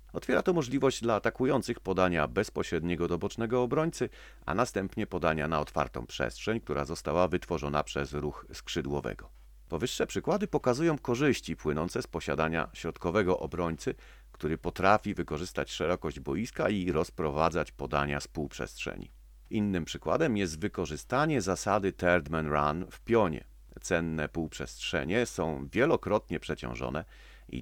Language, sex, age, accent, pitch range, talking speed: Polish, male, 40-59, native, 75-100 Hz, 125 wpm